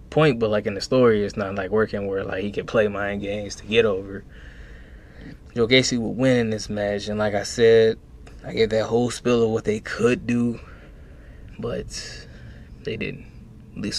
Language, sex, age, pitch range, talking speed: English, male, 20-39, 105-125 Hz, 195 wpm